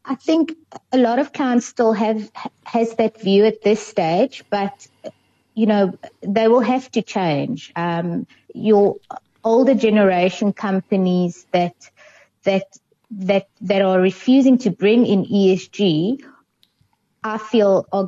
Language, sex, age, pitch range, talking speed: English, female, 20-39, 180-225 Hz, 135 wpm